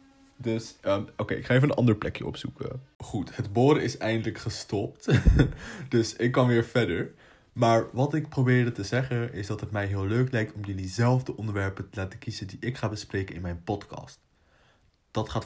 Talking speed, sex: 195 wpm, male